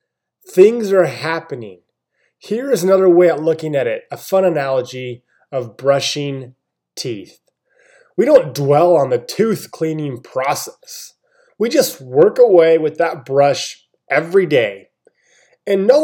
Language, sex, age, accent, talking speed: English, male, 20-39, American, 135 wpm